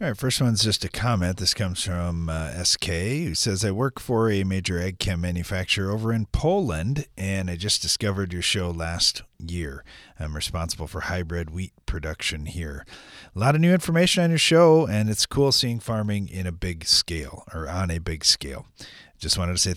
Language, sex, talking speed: English, male, 200 wpm